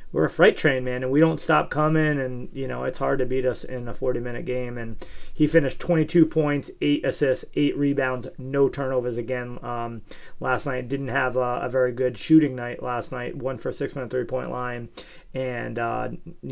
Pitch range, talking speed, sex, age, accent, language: 125-155 Hz, 205 wpm, male, 30-49, American, English